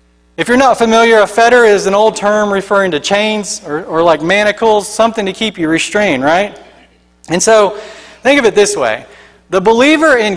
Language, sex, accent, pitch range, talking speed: English, male, American, 170-235 Hz, 190 wpm